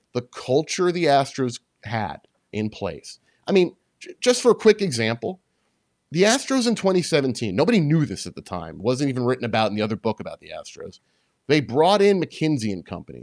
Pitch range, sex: 125-200 Hz, male